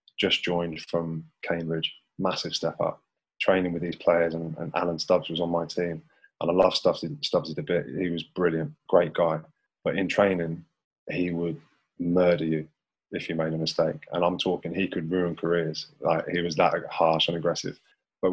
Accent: British